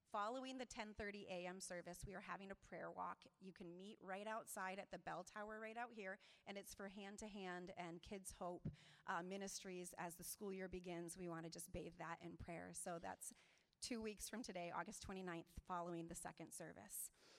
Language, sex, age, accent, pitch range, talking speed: English, female, 30-49, American, 180-220 Hz, 195 wpm